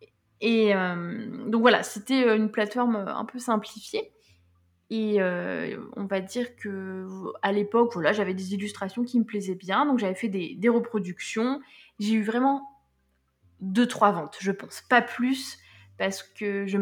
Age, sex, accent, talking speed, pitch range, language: 20-39, female, French, 155 wpm, 190-240 Hz, French